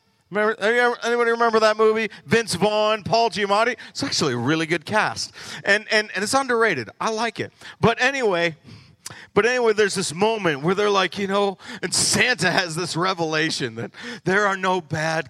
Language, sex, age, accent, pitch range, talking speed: English, male, 40-59, American, 155-215 Hz, 175 wpm